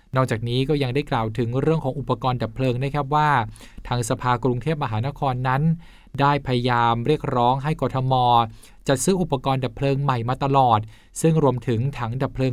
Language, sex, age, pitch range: Thai, male, 20-39, 115-145 Hz